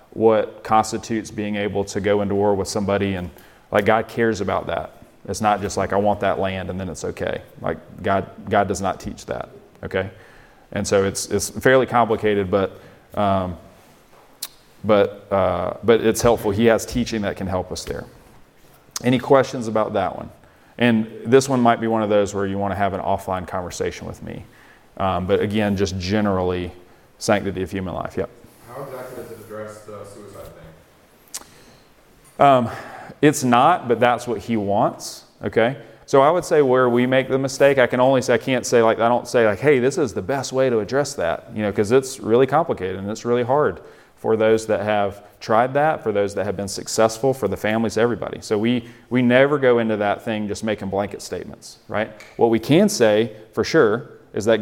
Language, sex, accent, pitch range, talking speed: English, male, American, 100-120 Hz, 195 wpm